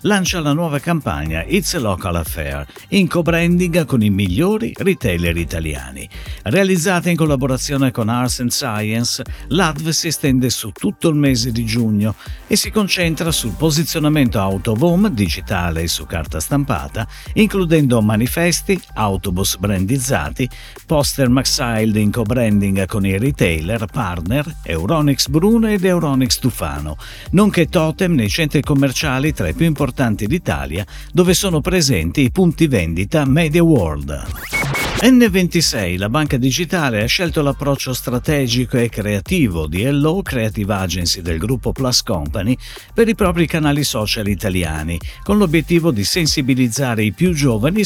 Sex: male